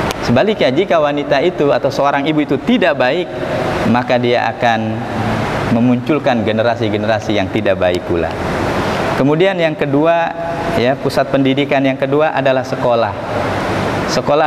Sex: male